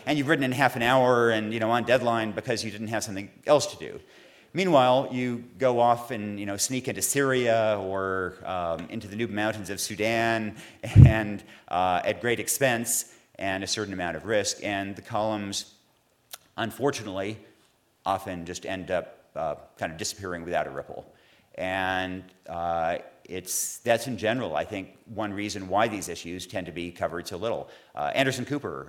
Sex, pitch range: male, 95-115 Hz